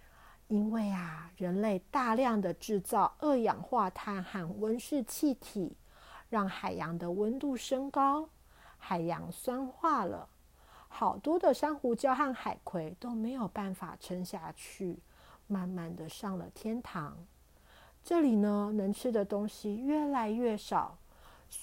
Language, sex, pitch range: Chinese, female, 185-240 Hz